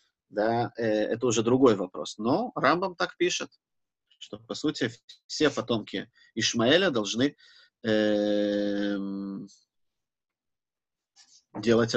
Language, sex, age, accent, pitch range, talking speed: Russian, male, 30-49, native, 110-145 Hz, 85 wpm